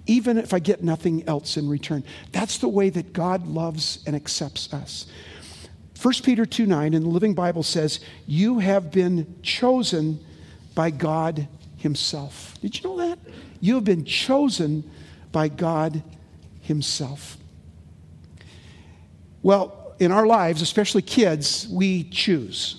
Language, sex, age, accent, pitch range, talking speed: English, male, 50-69, American, 150-200 Hz, 135 wpm